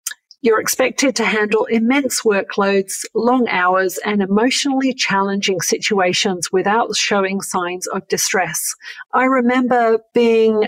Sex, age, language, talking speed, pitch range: female, 50-69, English, 110 wpm, 190-225 Hz